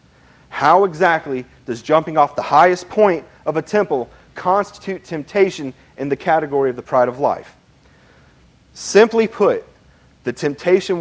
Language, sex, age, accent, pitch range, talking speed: English, male, 40-59, American, 125-180 Hz, 135 wpm